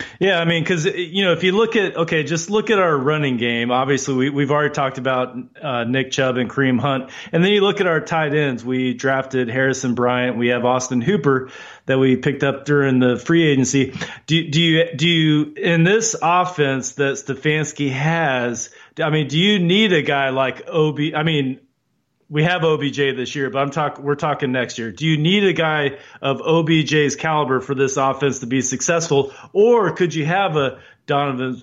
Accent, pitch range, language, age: American, 130-160 Hz, English, 30-49